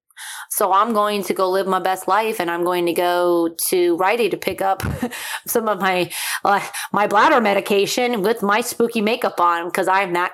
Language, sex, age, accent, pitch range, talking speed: English, female, 20-39, American, 180-210 Hz, 195 wpm